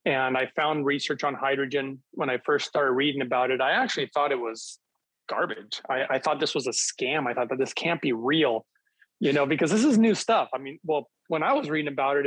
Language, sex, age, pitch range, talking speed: English, male, 30-49, 130-160 Hz, 240 wpm